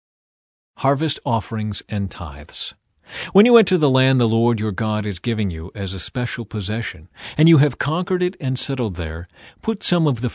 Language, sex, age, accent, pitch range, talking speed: English, male, 40-59, American, 110-145 Hz, 185 wpm